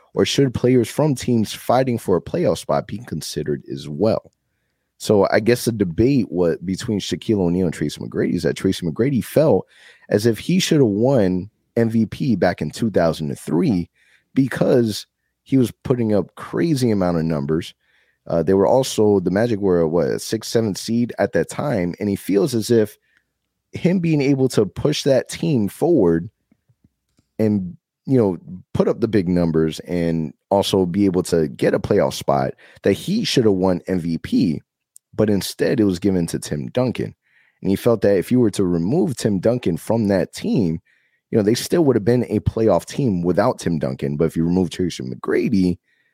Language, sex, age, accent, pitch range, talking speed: English, male, 30-49, American, 85-120 Hz, 180 wpm